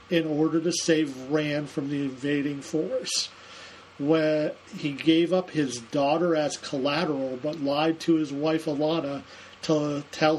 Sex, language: male, English